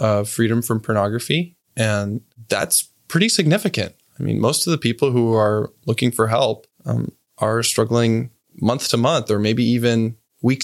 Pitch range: 110-130 Hz